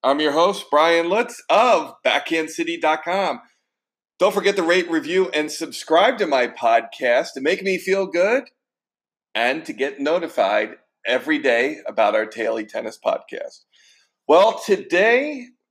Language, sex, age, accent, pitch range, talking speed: English, male, 40-59, American, 140-185 Hz, 135 wpm